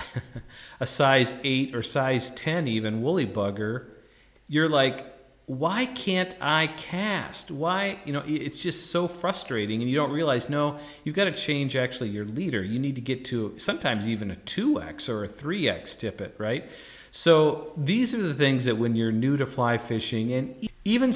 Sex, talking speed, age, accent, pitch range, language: male, 175 wpm, 40-59, American, 110-150 Hz, English